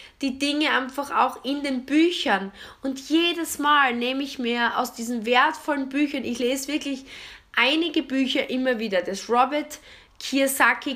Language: German